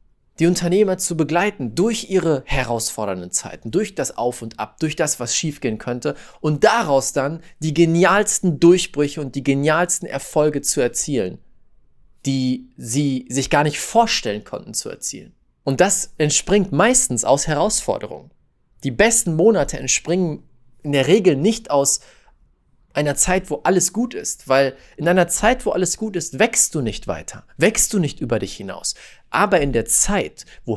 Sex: male